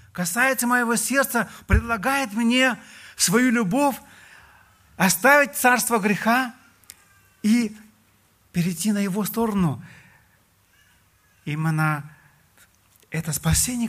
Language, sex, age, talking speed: Russian, male, 40-59, 80 wpm